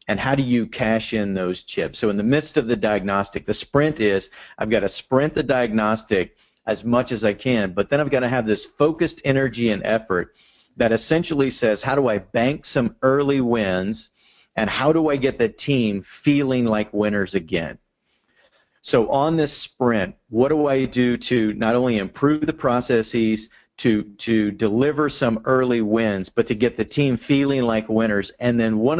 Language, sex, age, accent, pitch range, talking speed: English, male, 40-59, American, 110-130 Hz, 190 wpm